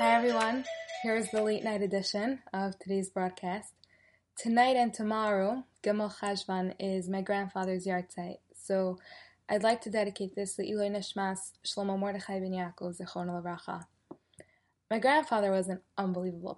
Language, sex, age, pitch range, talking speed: English, female, 10-29, 185-225 Hz, 140 wpm